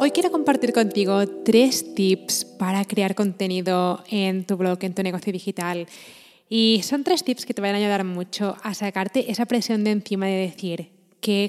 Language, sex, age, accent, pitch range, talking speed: Spanish, female, 20-39, Spanish, 185-225 Hz, 185 wpm